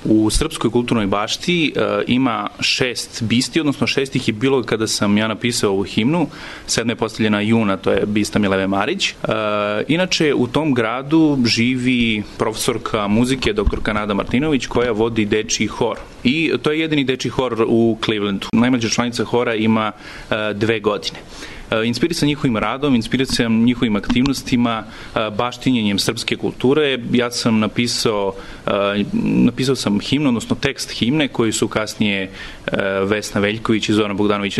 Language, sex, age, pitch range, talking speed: English, male, 30-49, 105-120 Hz, 150 wpm